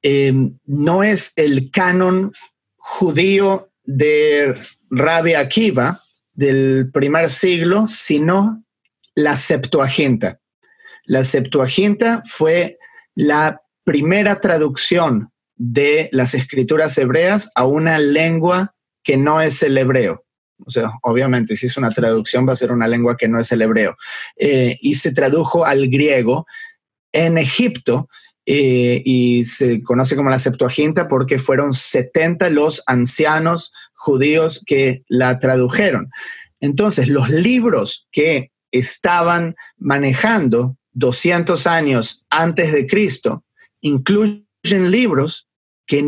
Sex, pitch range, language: male, 130-185 Hz, Spanish